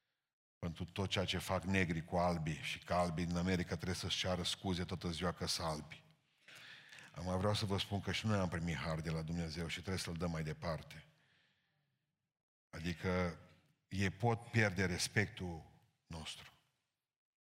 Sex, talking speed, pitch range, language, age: male, 165 wpm, 90-110 Hz, Romanian, 50-69